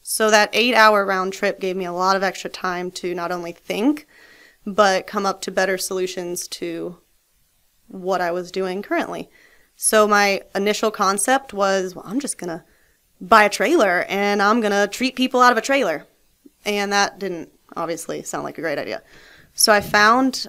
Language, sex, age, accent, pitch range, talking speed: English, female, 20-39, American, 180-205 Hz, 185 wpm